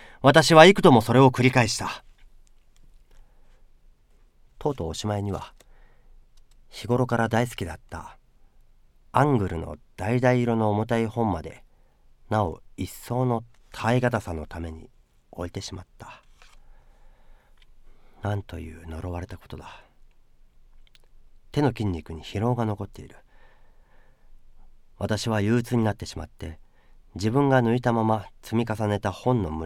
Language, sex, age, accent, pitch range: Japanese, male, 40-59, native, 85-115 Hz